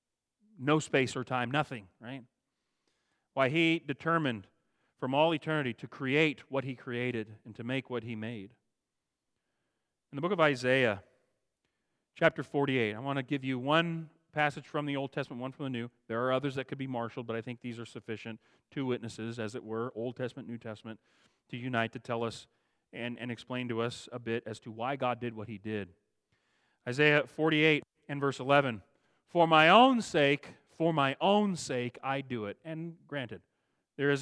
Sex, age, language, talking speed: male, 40-59, English, 190 wpm